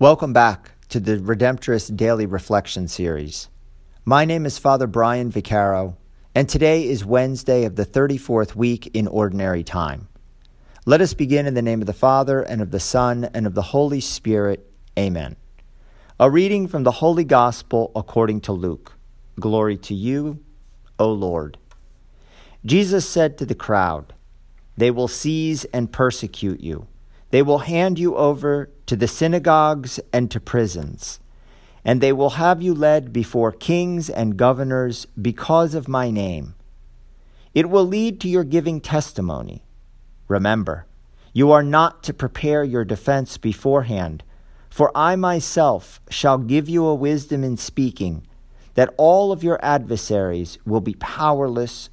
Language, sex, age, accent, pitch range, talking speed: English, male, 50-69, American, 100-145 Hz, 150 wpm